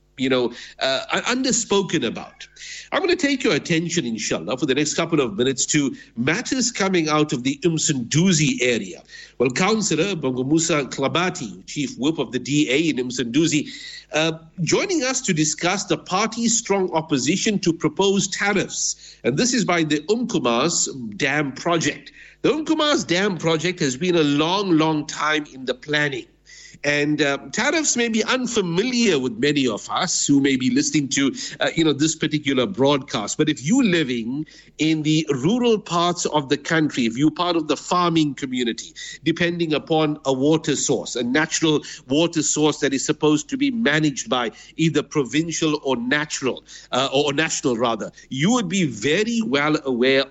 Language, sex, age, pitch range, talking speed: English, male, 50-69, 145-190 Hz, 165 wpm